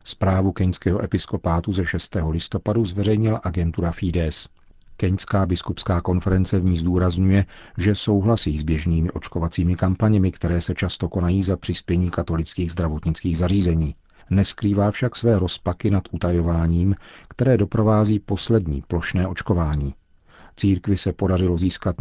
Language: Czech